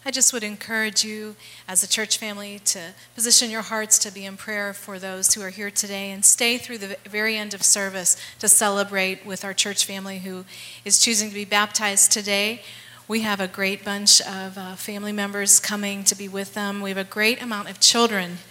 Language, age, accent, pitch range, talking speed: English, 30-49, American, 190-220 Hz, 210 wpm